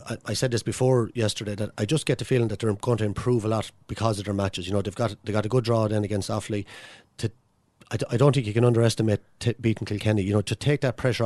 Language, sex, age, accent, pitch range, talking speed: English, male, 30-49, Irish, 105-120 Hz, 270 wpm